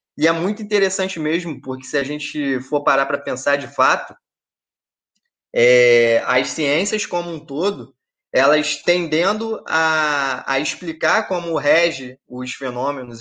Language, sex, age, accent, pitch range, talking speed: Portuguese, male, 20-39, Brazilian, 130-175 Hz, 130 wpm